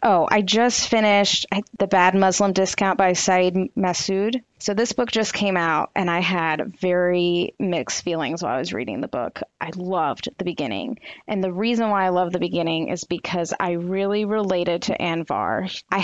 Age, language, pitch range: 20-39, English, 185-220 Hz